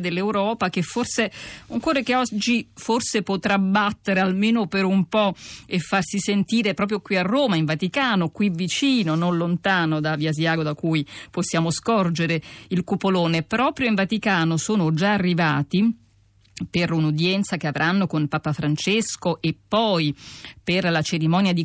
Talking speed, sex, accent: 150 wpm, female, native